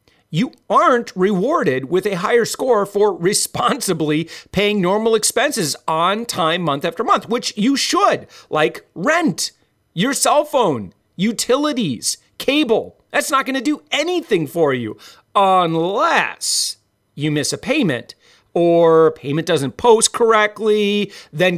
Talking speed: 130 wpm